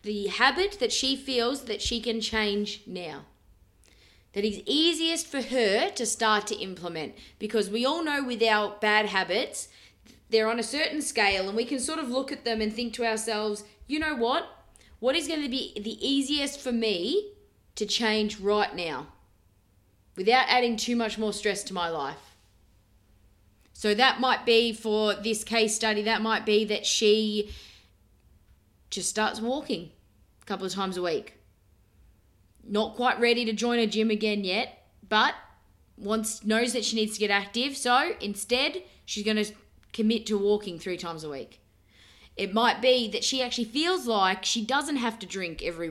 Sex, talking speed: female, 175 wpm